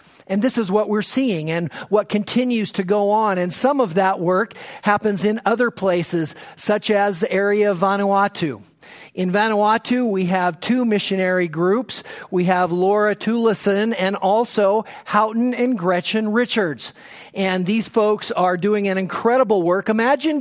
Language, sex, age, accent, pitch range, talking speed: English, male, 40-59, American, 185-225 Hz, 155 wpm